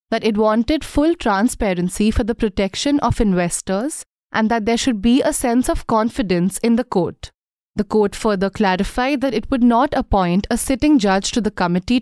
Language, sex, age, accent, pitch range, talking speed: English, female, 30-49, Indian, 200-265 Hz, 185 wpm